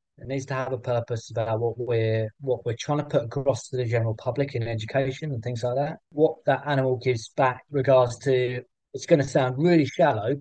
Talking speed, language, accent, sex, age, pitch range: 215 wpm, English, British, male, 20-39, 115-135 Hz